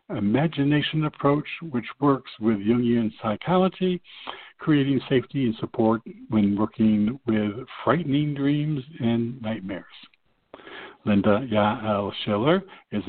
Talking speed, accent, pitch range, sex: 100 wpm, American, 105-145 Hz, male